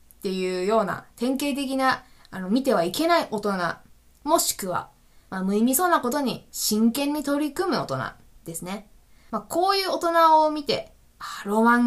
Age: 20-39